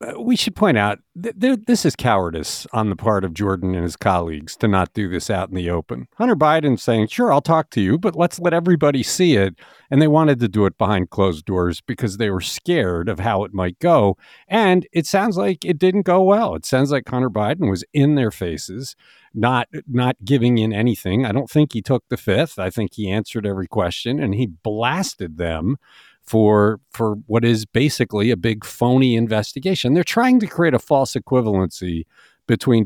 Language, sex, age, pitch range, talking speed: English, male, 50-69, 95-140 Hz, 205 wpm